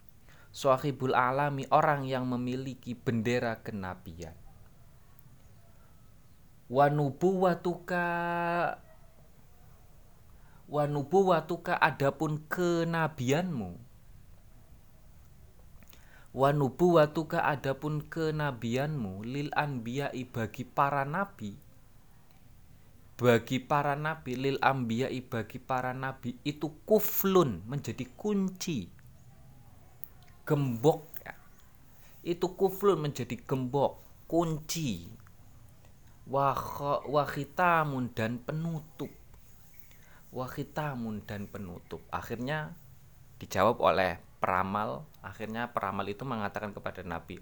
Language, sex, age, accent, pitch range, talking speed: Indonesian, male, 30-49, native, 110-150 Hz, 75 wpm